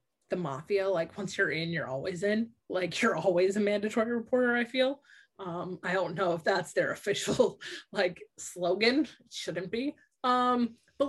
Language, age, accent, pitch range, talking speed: English, 20-39, American, 180-245 Hz, 175 wpm